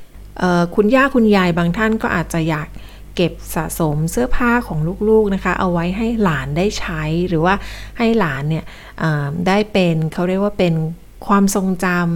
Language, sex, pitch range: Thai, female, 165-210 Hz